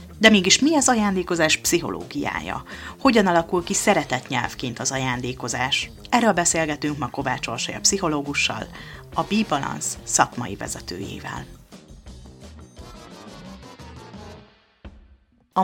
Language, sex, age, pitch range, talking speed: Hungarian, female, 30-49, 145-170 Hz, 95 wpm